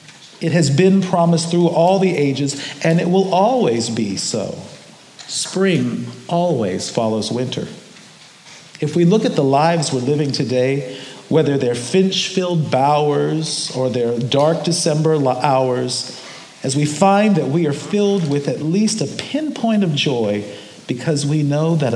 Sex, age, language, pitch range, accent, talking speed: male, 50-69, English, 130-180 Hz, American, 150 wpm